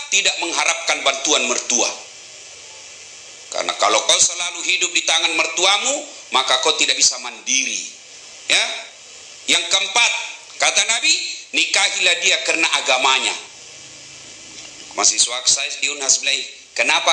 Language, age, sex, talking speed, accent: Indonesian, 50-69, male, 100 wpm, native